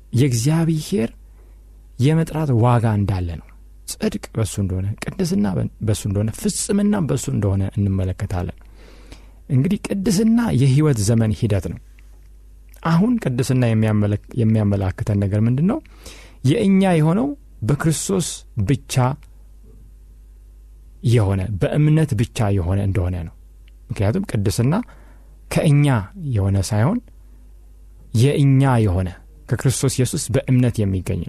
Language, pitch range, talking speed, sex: Amharic, 90-145 Hz, 90 wpm, male